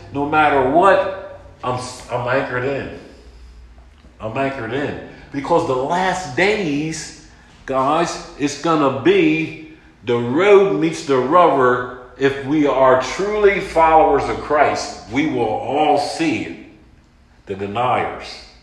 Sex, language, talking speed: male, English, 120 wpm